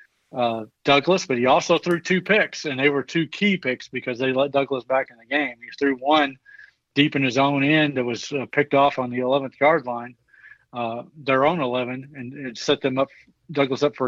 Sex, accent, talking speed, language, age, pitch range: male, American, 220 wpm, English, 40-59, 130-150 Hz